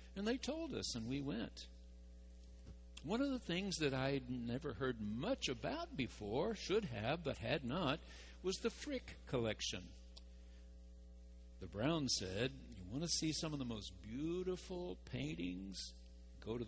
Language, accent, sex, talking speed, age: English, American, male, 150 wpm, 60-79